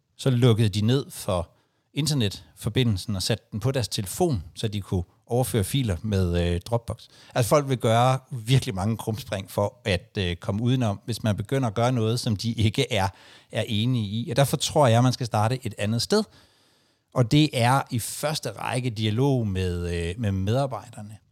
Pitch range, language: 105-135 Hz, Danish